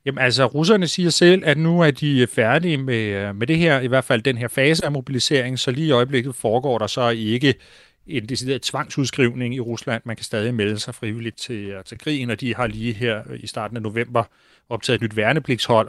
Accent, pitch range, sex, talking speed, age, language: native, 115-135 Hz, male, 215 wpm, 30-49, Danish